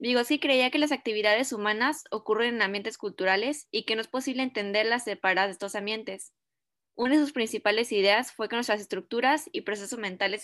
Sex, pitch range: female, 200-235 Hz